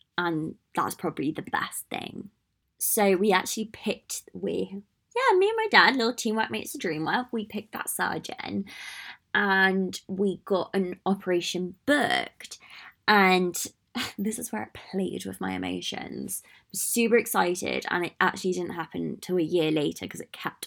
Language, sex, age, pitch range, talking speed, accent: English, female, 20-39, 175-205 Hz, 160 wpm, British